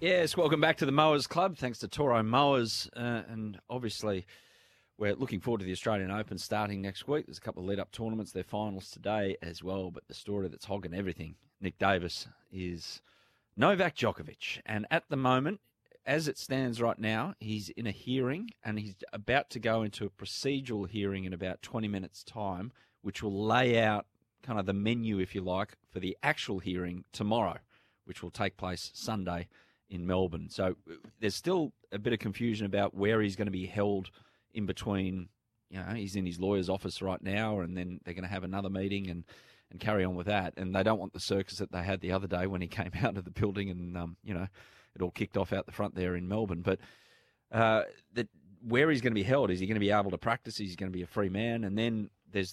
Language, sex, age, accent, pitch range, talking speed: English, male, 30-49, Australian, 95-110 Hz, 225 wpm